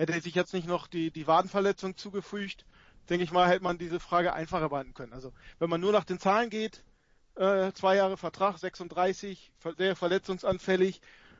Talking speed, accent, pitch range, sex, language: 175 wpm, German, 155-180 Hz, male, German